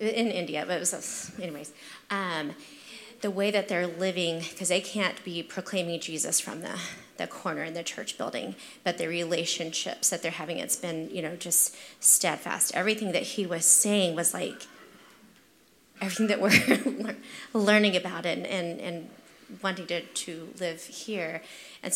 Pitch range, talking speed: 175-225 Hz, 160 wpm